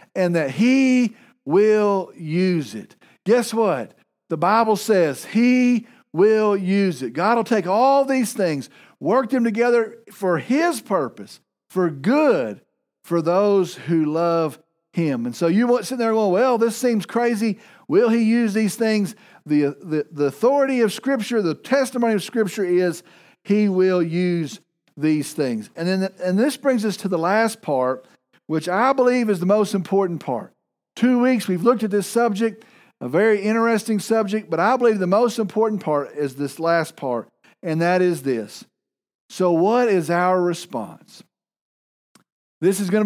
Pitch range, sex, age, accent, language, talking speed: 180-235 Hz, male, 50-69, American, English, 165 wpm